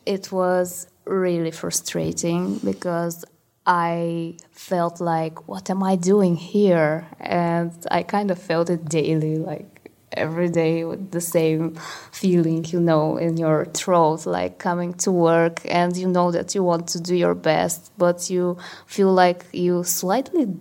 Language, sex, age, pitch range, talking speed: English, female, 20-39, 160-180 Hz, 150 wpm